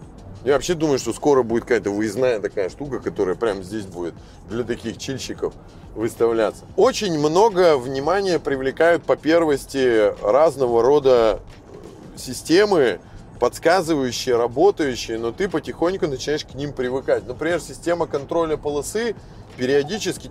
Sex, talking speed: male, 120 wpm